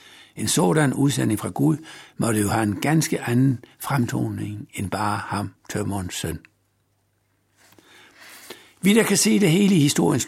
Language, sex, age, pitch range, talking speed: Danish, male, 60-79, 110-160 Hz, 145 wpm